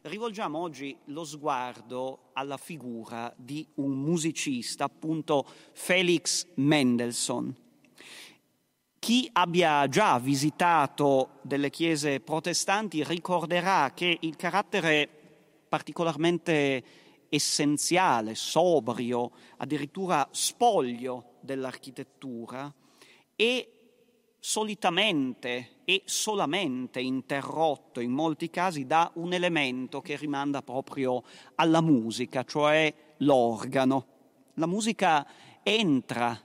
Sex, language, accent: male, Italian, native